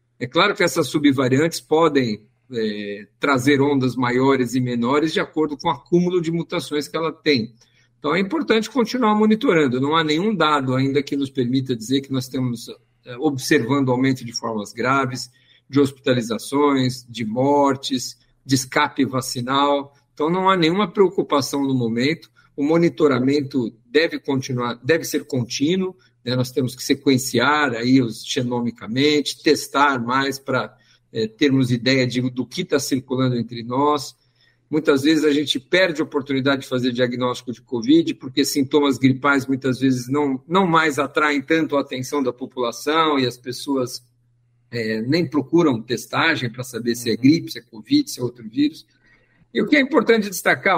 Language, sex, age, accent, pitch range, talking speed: Portuguese, male, 50-69, Brazilian, 125-150 Hz, 160 wpm